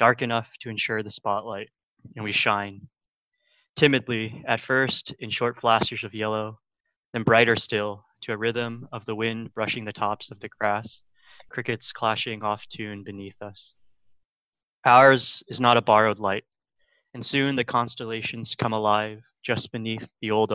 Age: 20-39